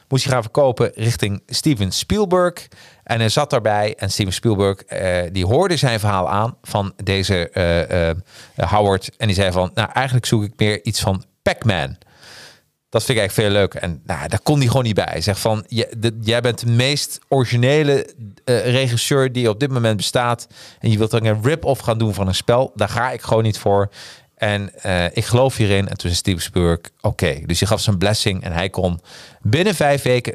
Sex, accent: male, Dutch